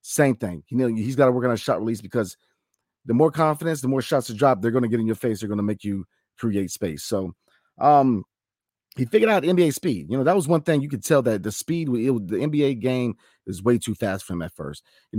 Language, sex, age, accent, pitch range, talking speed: English, male, 40-59, American, 100-130 Hz, 270 wpm